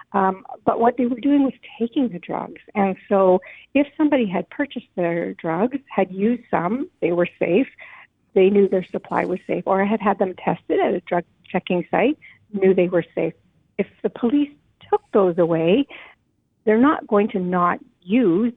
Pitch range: 170-215 Hz